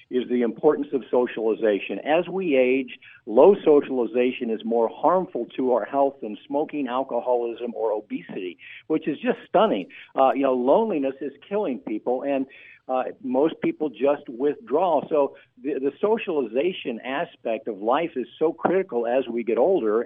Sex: male